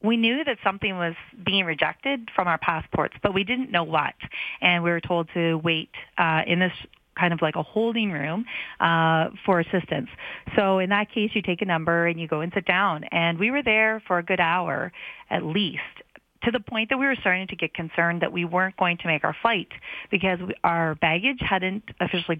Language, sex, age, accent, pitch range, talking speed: English, female, 30-49, American, 165-200 Hz, 215 wpm